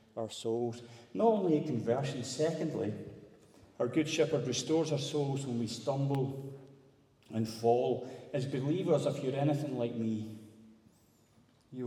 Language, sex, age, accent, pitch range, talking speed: English, male, 40-59, British, 110-135 Hz, 130 wpm